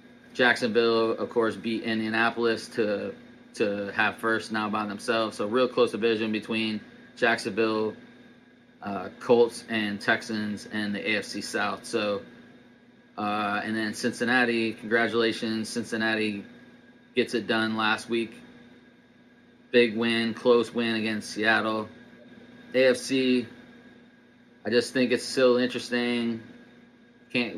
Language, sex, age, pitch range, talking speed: English, male, 20-39, 110-115 Hz, 115 wpm